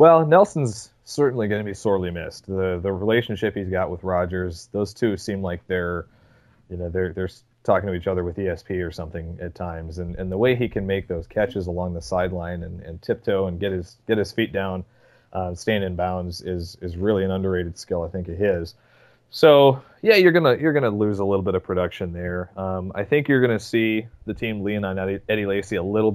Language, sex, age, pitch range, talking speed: English, male, 30-49, 90-105 Hz, 225 wpm